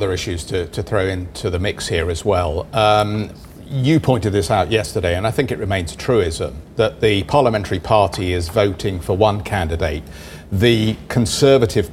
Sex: male